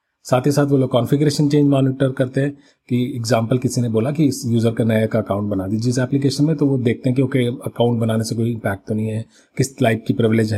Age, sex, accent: 40-59, male, Indian